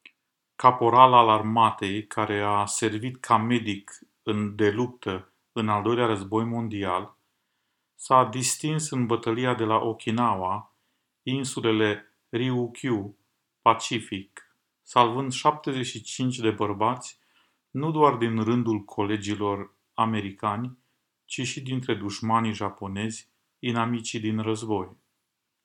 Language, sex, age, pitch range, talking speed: Romanian, male, 40-59, 110-125 Hz, 100 wpm